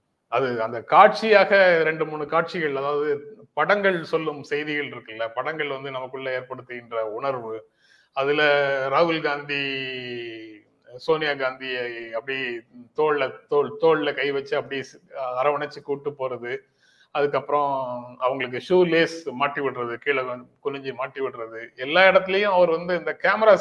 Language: Tamil